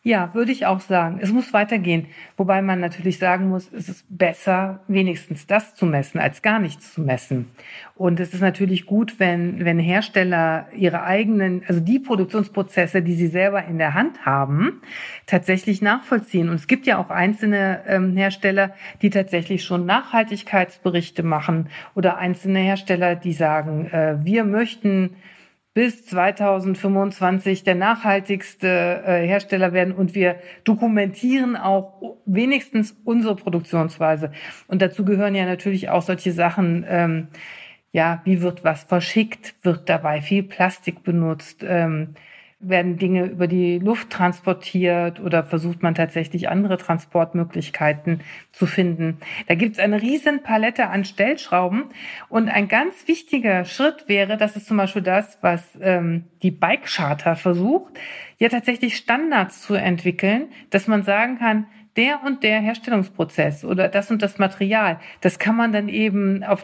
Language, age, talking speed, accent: German, 50-69, 150 wpm, German